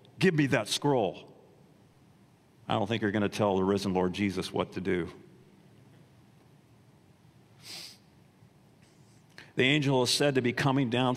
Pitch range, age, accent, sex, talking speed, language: 105-155 Hz, 50-69, American, male, 140 wpm, English